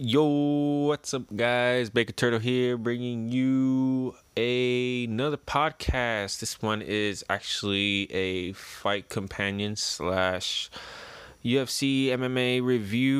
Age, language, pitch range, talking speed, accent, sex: 20-39, English, 100-130 Hz, 105 wpm, American, male